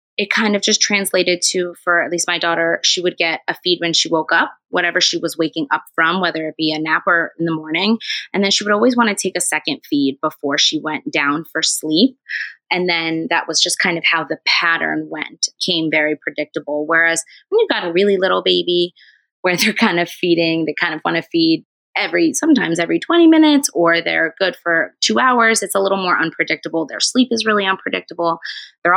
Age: 20-39